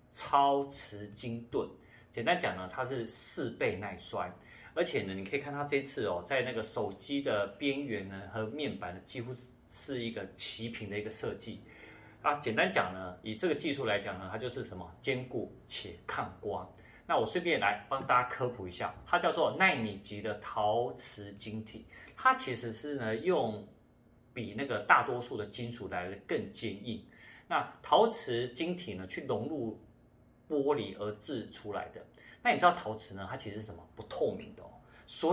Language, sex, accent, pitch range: Chinese, male, native, 105-135 Hz